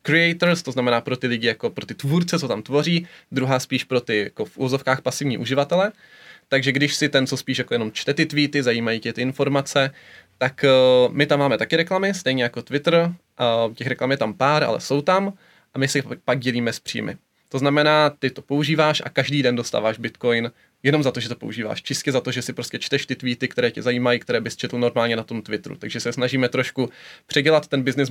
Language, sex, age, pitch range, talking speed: Czech, male, 20-39, 125-145 Hz, 220 wpm